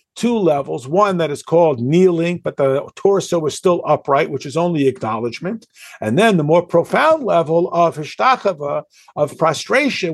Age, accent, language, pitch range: 50-69, American, English, 160-210 Hz